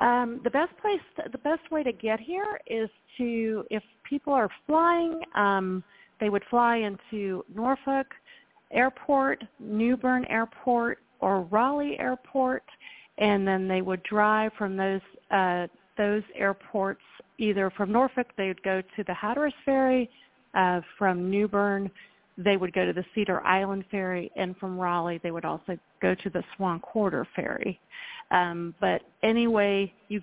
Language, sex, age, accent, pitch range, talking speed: English, female, 40-59, American, 185-230 Hz, 155 wpm